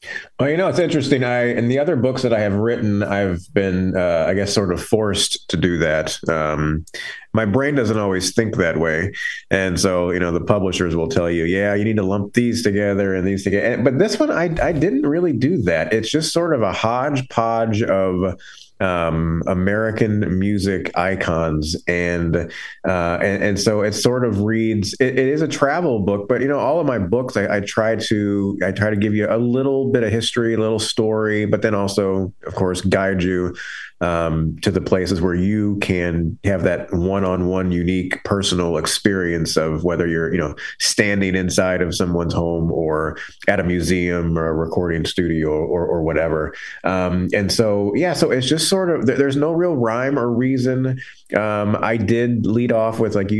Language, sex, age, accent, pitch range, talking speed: English, male, 30-49, American, 90-115 Hz, 195 wpm